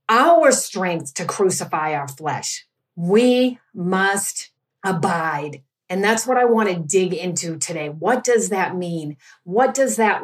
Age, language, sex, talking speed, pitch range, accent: 50-69, English, female, 145 wpm, 175-245 Hz, American